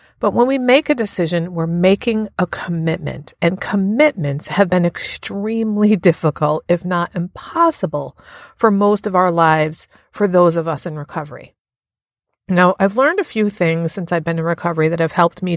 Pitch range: 165-210 Hz